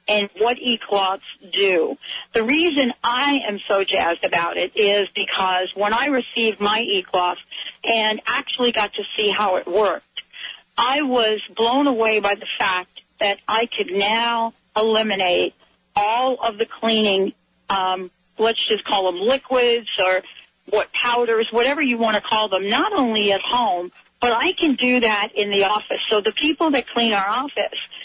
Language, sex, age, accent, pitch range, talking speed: English, female, 40-59, American, 200-245 Hz, 170 wpm